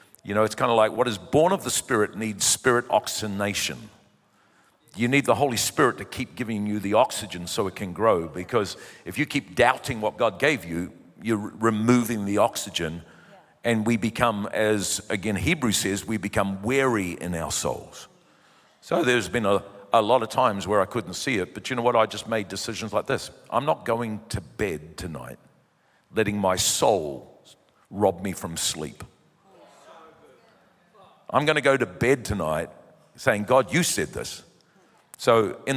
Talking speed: 180 wpm